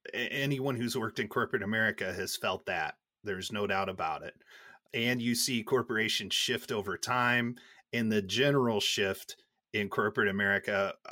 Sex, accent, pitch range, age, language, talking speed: male, American, 110-140 Hz, 30-49, English, 150 wpm